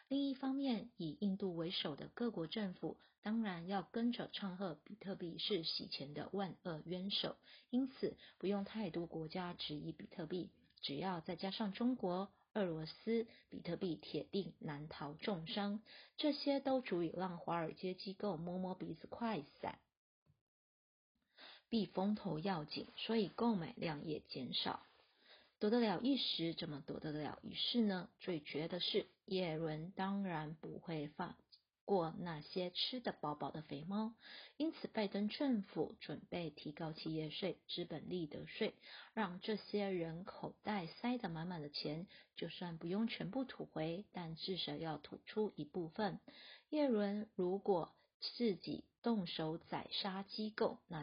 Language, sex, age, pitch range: Chinese, female, 30-49, 160-210 Hz